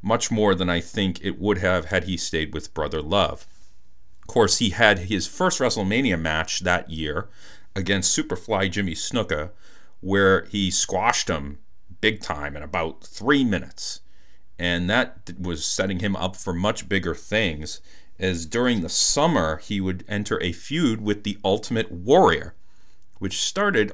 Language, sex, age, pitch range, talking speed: English, male, 40-59, 95-120 Hz, 160 wpm